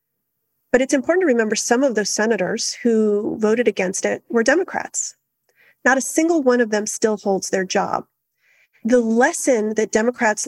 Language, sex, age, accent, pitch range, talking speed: English, female, 40-59, American, 210-265 Hz, 165 wpm